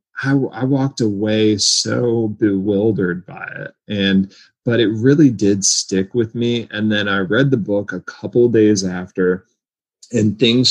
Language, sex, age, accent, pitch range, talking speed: English, male, 30-49, American, 90-110 Hz, 165 wpm